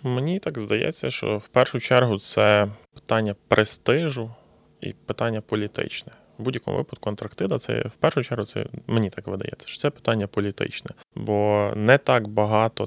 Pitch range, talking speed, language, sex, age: 105-120 Hz, 155 wpm, Ukrainian, male, 20-39